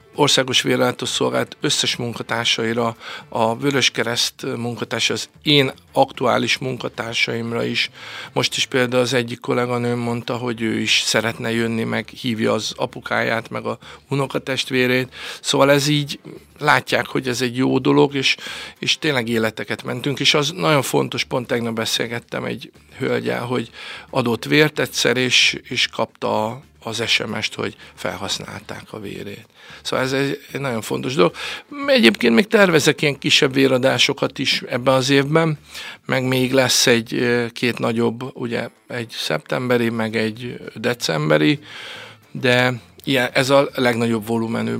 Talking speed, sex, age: 135 wpm, male, 50-69